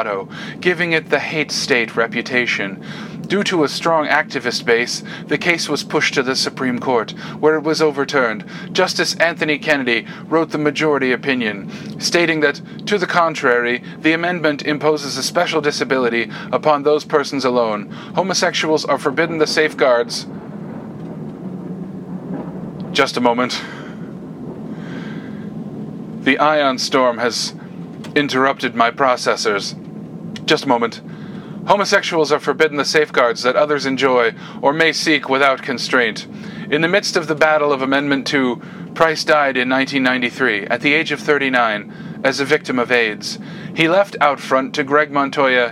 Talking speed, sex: 140 wpm, male